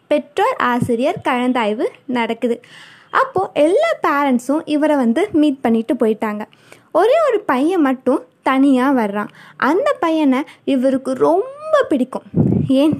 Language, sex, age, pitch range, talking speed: Tamil, female, 20-39, 240-325 Hz, 110 wpm